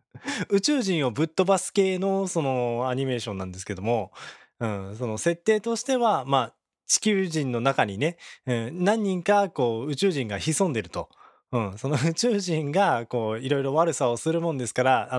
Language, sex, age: Japanese, male, 20-39